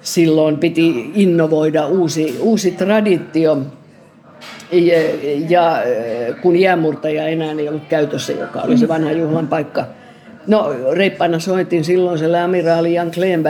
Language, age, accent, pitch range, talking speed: Finnish, 50-69, native, 160-185 Hz, 115 wpm